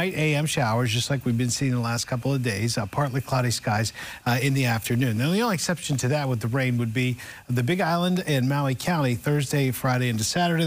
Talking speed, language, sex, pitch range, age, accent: 230 wpm, English, male, 120-150 Hz, 50-69, American